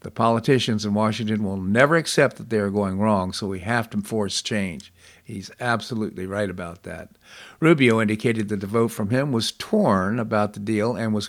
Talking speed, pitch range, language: 195 wpm, 100-115 Hz, English